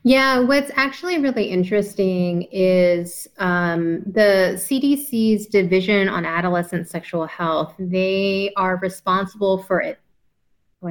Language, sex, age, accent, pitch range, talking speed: English, female, 30-49, American, 180-220 Hz, 110 wpm